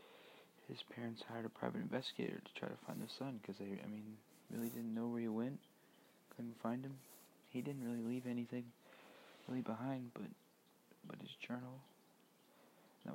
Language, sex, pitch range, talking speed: English, male, 105-130 Hz, 170 wpm